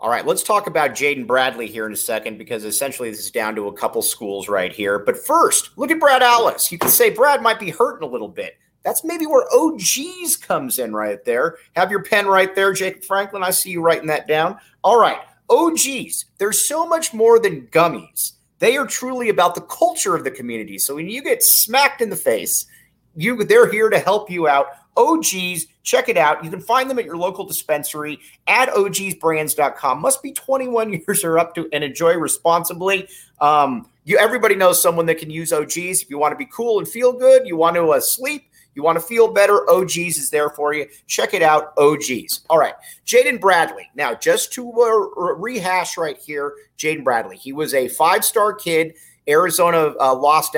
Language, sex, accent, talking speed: English, male, American, 205 wpm